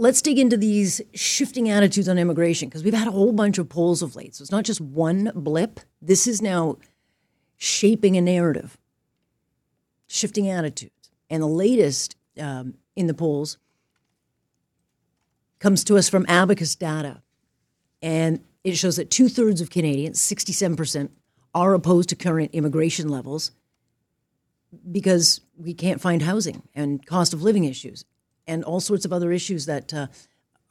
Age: 40-59